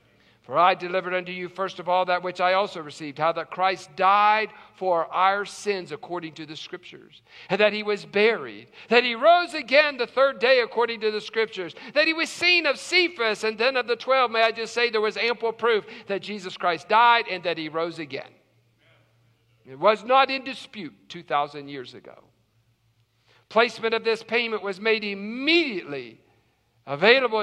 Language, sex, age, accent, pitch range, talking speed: English, male, 50-69, American, 190-255 Hz, 185 wpm